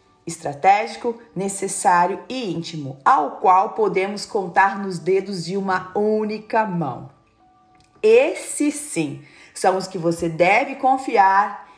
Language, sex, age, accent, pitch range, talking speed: Portuguese, female, 40-59, Brazilian, 180-255 Hz, 110 wpm